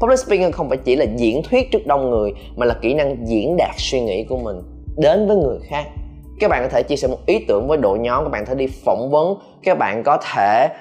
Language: Vietnamese